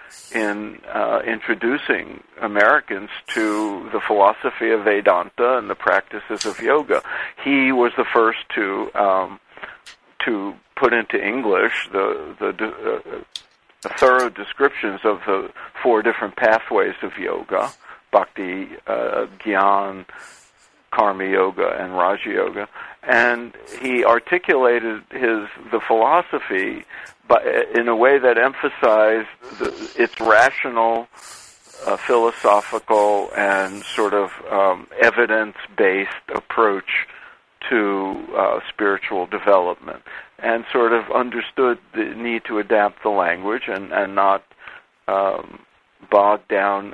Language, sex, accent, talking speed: English, male, American, 110 wpm